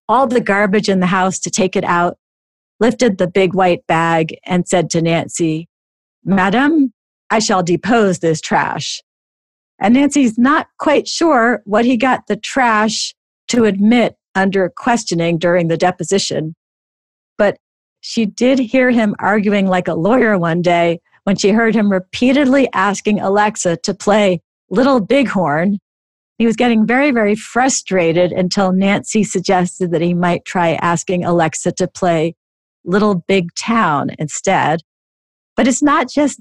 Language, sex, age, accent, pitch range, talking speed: English, female, 50-69, American, 175-225 Hz, 145 wpm